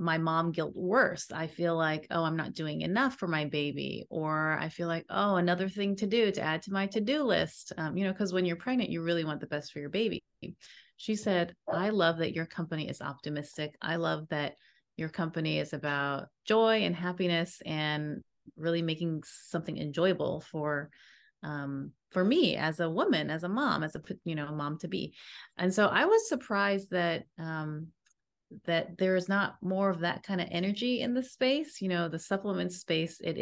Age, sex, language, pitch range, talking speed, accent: 30-49, female, English, 155-185 Hz, 205 wpm, American